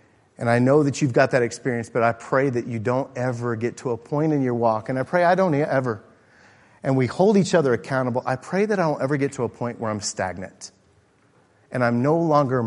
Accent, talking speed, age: American, 240 wpm, 50-69